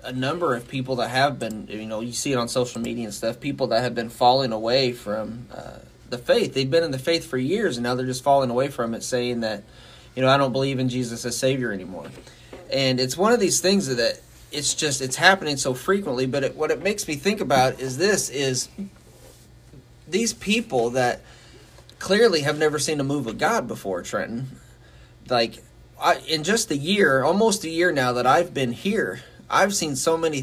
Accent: American